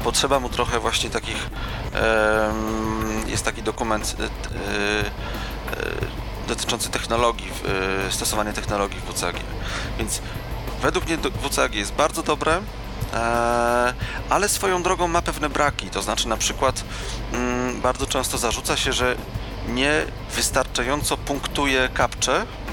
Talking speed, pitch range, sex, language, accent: 105 wpm, 105-130 Hz, male, Polish, native